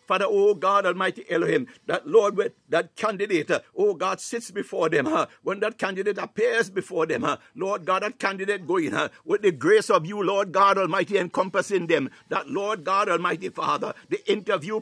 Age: 60-79